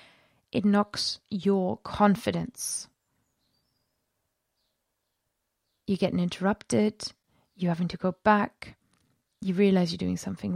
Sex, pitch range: female, 190-225 Hz